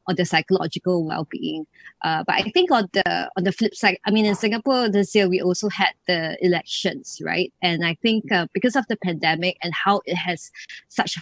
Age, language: 20-39, English